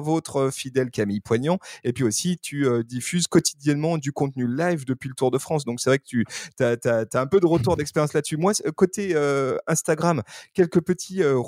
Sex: male